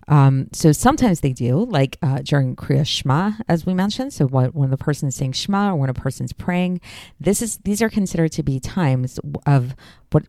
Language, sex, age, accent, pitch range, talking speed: English, female, 40-59, American, 130-160 Hz, 205 wpm